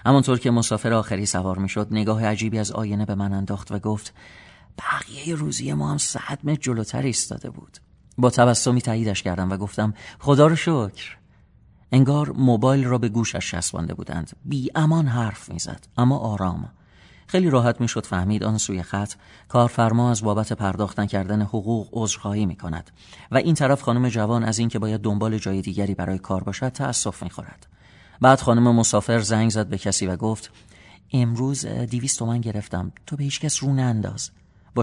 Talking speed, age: 165 wpm, 40-59